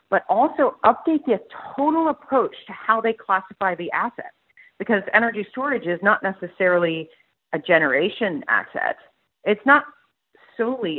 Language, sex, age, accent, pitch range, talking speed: English, female, 40-59, American, 160-220 Hz, 130 wpm